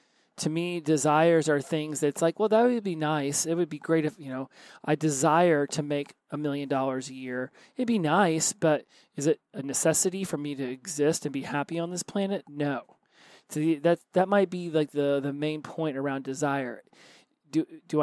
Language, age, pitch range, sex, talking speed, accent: English, 30-49, 145-170 Hz, male, 205 wpm, American